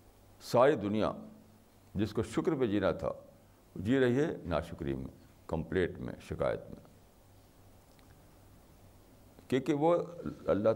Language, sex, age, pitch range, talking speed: Urdu, male, 60-79, 95-120 Hz, 110 wpm